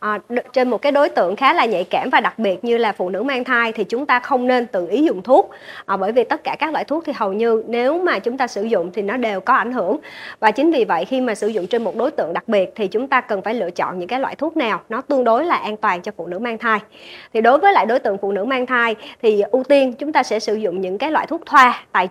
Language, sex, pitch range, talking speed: Vietnamese, male, 215-275 Hz, 305 wpm